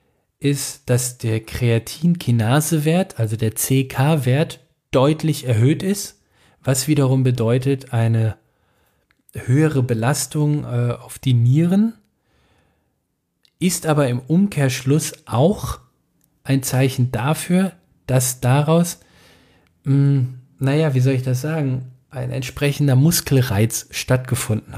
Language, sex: German, male